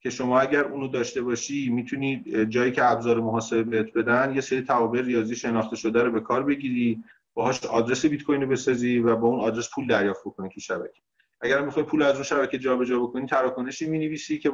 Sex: male